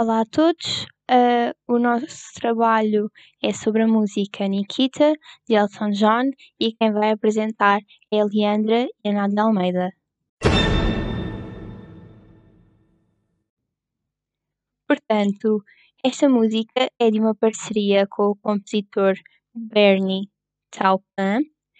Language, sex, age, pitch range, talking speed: Portuguese, female, 10-29, 210-235 Hz, 100 wpm